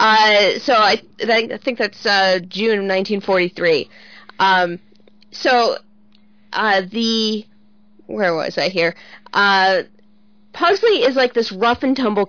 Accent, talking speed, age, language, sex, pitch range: American, 130 wpm, 40-59, English, female, 180-230 Hz